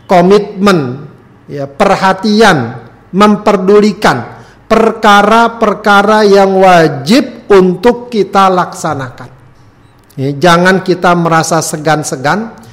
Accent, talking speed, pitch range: native, 60 wpm, 150-220 Hz